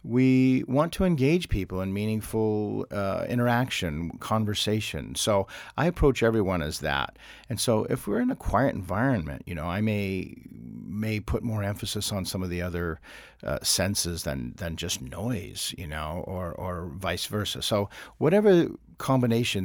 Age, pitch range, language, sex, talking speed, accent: 50-69, 90-120 Hz, English, male, 160 wpm, American